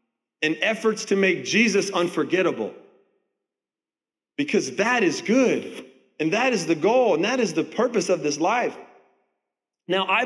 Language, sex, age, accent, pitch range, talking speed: English, male, 30-49, American, 175-240 Hz, 145 wpm